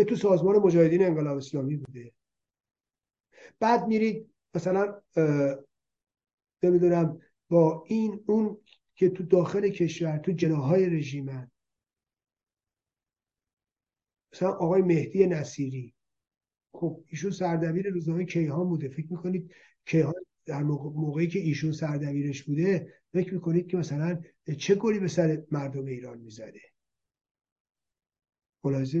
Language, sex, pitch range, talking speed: Persian, male, 145-180 Hz, 105 wpm